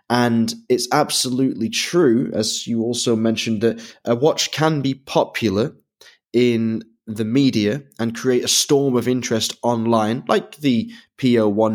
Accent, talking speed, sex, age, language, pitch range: British, 140 wpm, male, 20-39, English, 105-125 Hz